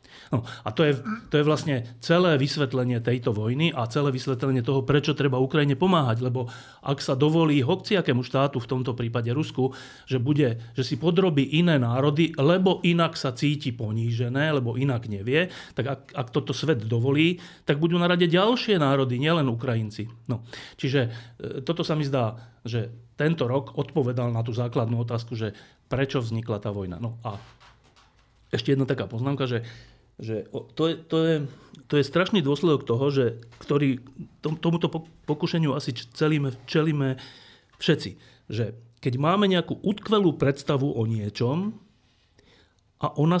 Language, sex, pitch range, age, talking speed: Slovak, male, 120-165 Hz, 40-59, 150 wpm